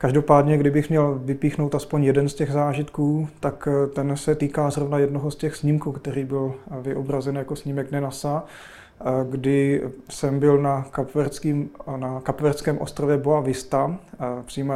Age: 30-49